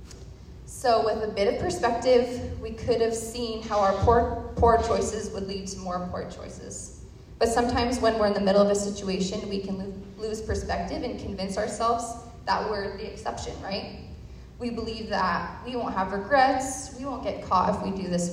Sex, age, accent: female, 20-39, American